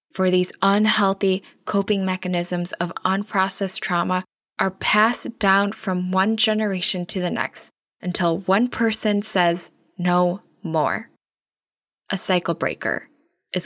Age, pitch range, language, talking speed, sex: 10-29, 175-205 Hz, English, 120 wpm, female